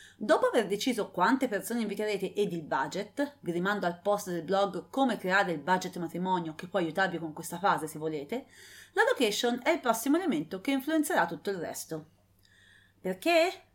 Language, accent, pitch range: English, Italian, 185-275 Hz